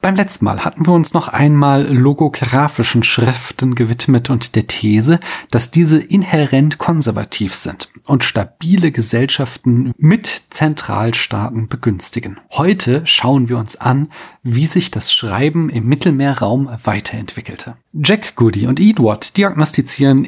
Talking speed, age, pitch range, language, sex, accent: 125 wpm, 40-59, 120-155 Hz, German, male, German